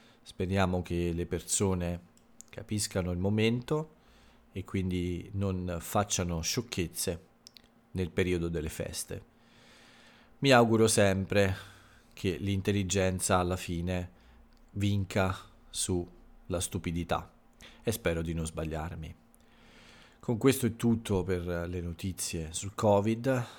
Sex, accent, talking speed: male, native, 100 wpm